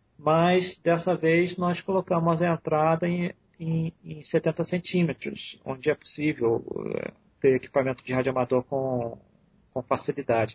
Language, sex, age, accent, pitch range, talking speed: Portuguese, male, 40-59, Brazilian, 125-170 Hz, 120 wpm